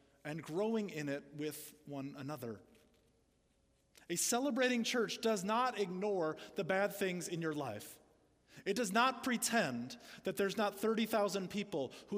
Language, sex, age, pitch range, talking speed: English, male, 30-49, 165-210 Hz, 145 wpm